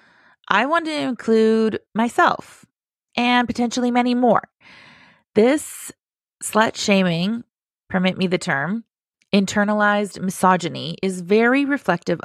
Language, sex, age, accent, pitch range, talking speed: English, female, 30-49, American, 175-225 Hz, 105 wpm